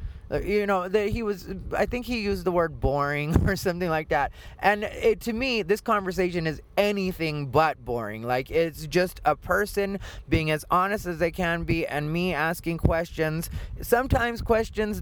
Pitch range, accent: 145-190 Hz, American